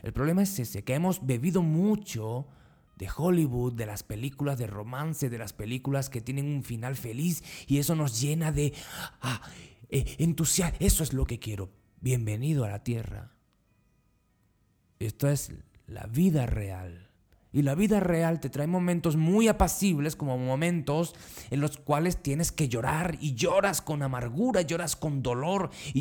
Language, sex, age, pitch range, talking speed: Spanish, male, 30-49, 110-155 Hz, 165 wpm